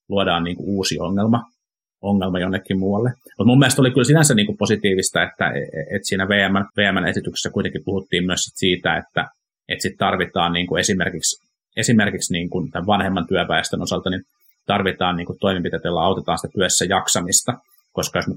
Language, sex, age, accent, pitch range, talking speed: Finnish, male, 30-49, native, 90-110 Hz, 155 wpm